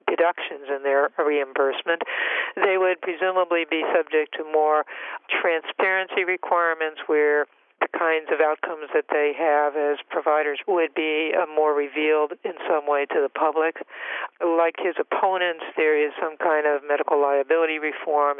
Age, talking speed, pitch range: 60-79, 145 wpm, 150-185 Hz